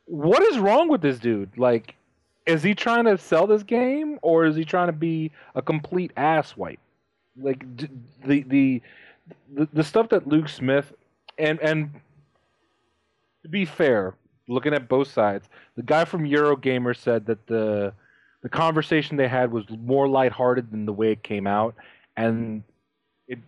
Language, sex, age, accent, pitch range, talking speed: English, male, 30-49, American, 110-145 Hz, 160 wpm